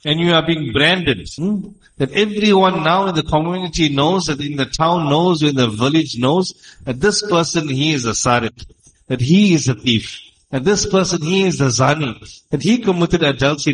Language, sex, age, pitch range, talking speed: English, male, 50-69, 135-175 Hz, 195 wpm